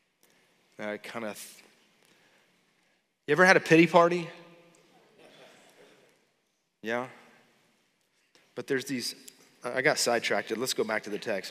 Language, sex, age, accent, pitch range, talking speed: English, male, 30-49, American, 110-150 Hz, 115 wpm